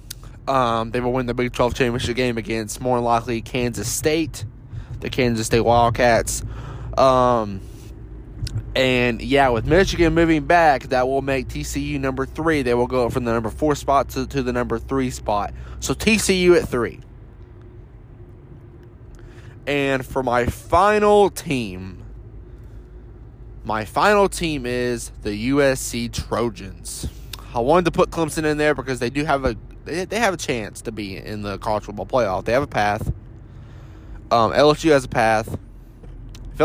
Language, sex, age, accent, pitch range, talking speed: English, male, 20-39, American, 110-130 Hz, 155 wpm